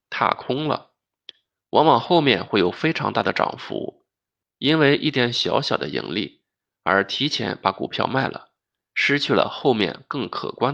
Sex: male